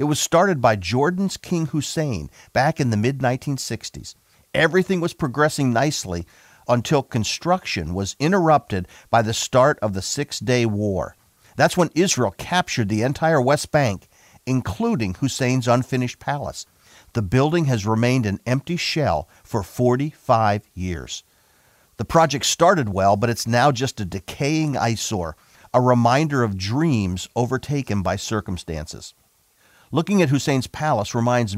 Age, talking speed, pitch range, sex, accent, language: 50-69, 135 wpm, 105-150 Hz, male, American, English